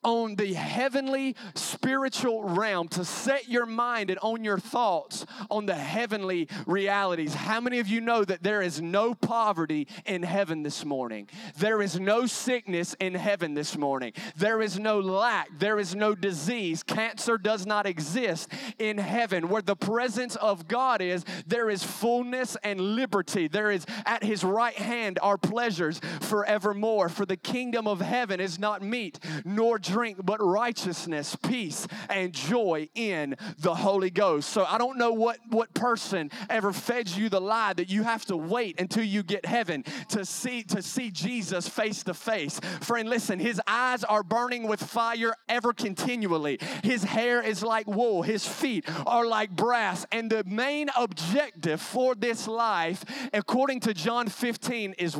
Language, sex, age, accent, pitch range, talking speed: English, male, 30-49, American, 190-235 Hz, 165 wpm